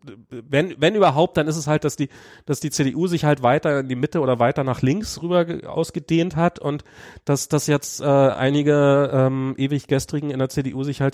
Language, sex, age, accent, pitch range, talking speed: German, male, 40-59, German, 95-135 Hz, 210 wpm